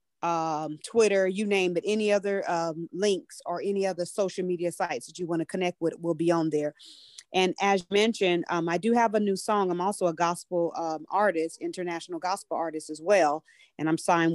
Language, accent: English, American